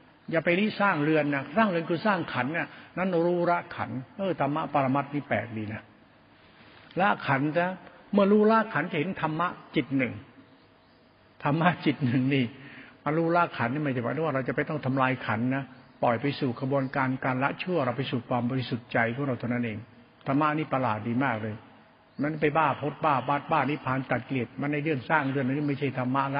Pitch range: 125-160 Hz